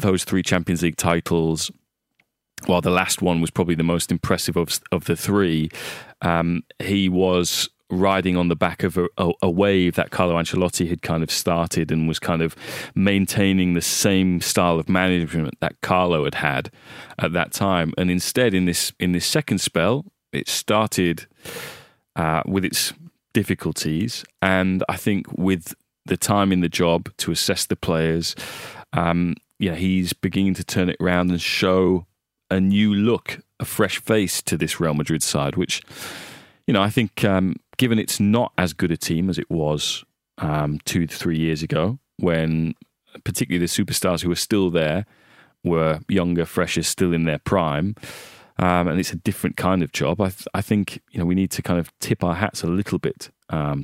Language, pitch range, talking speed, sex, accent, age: English, 85-95 Hz, 185 wpm, male, British, 20-39